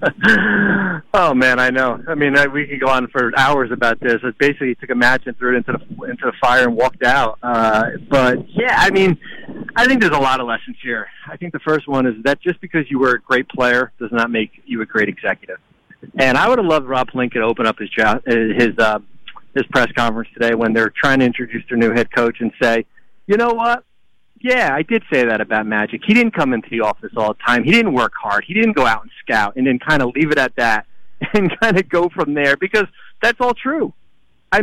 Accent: American